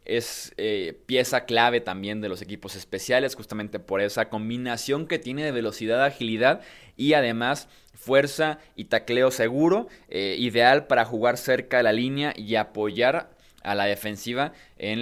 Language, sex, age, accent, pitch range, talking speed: Spanish, male, 20-39, Mexican, 110-140 Hz, 150 wpm